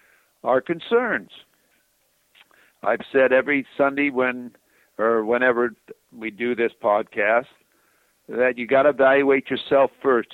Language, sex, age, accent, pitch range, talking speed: English, male, 60-79, American, 125-190 Hz, 115 wpm